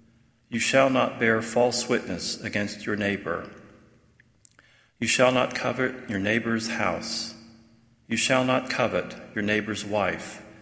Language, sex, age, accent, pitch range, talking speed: English, male, 40-59, American, 105-120 Hz, 130 wpm